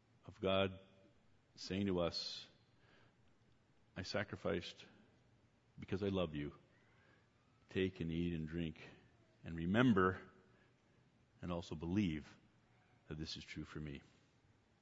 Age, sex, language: 50-69, male, English